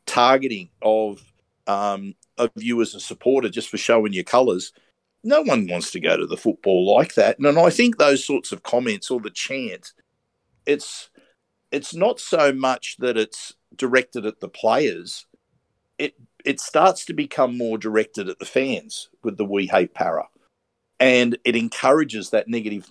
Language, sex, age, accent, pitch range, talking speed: English, male, 50-69, Australian, 110-130 Hz, 170 wpm